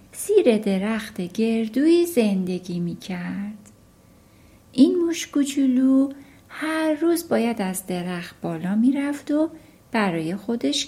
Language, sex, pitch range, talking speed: Persian, female, 205-295 Hz, 105 wpm